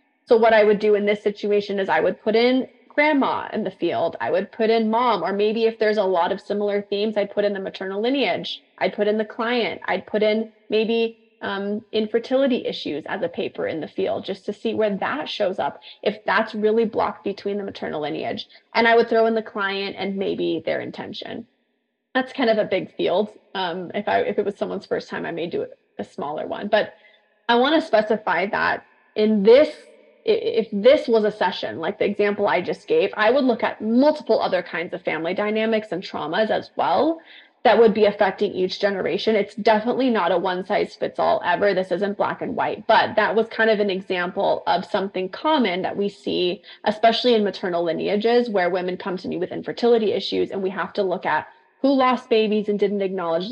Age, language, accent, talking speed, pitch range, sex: 20-39, English, American, 210 wpm, 195-230 Hz, female